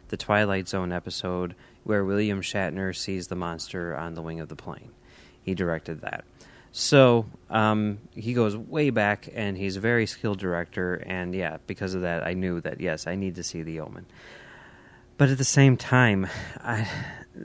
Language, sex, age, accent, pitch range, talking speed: English, male, 30-49, American, 95-120 Hz, 180 wpm